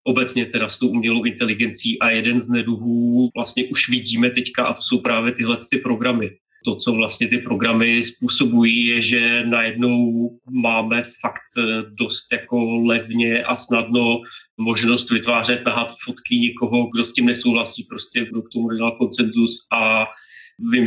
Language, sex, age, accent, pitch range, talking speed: Czech, male, 30-49, native, 115-120 Hz, 150 wpm